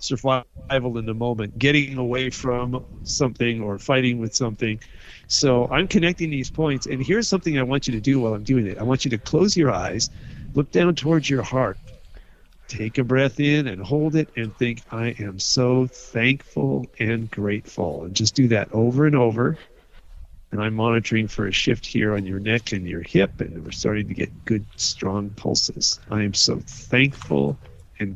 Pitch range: 110-135 Hz